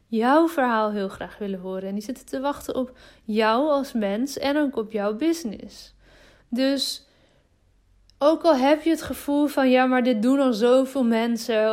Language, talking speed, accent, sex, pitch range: Dutch, 180 wpm, Dutch, female, 220-255 Hz